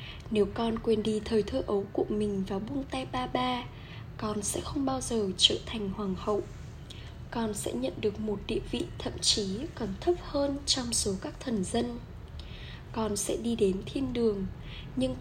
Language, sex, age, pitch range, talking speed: Vietnamese, female, 10-29, 190-235 Hz, 185 wpm